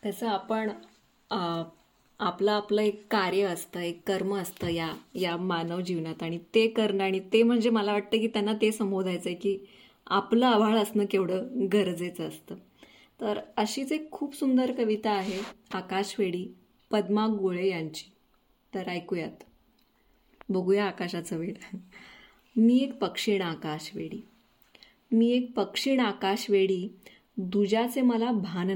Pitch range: 180-225 Hz